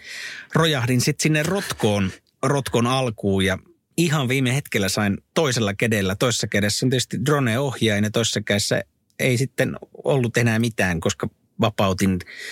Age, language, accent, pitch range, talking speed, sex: 50-69, Finnish, native, 105-135 Hz, 130 wpm, male